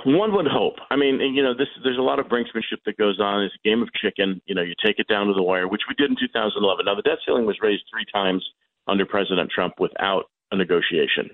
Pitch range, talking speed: 90-110 Hz, 265 wpm